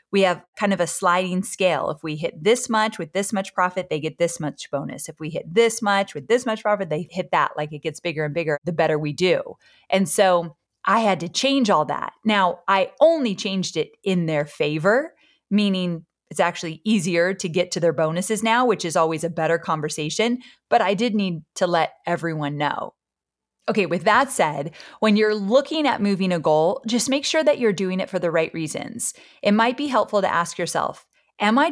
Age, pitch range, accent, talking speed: 30-49, 170-235 Hz, American, 215 wpm